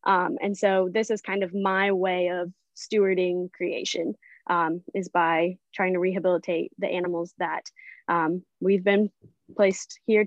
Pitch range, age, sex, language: 175-200 Hz, 10-29, female, English